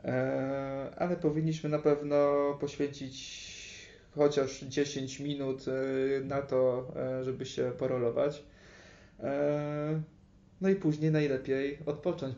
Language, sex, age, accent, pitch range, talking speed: Polish, male, 20-39, native, 130-145 Hz, 85 wpm